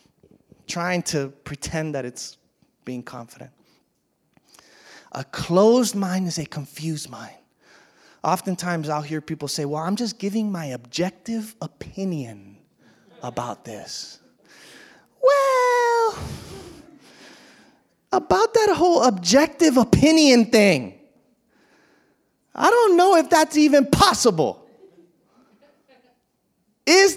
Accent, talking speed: American, 95 wpm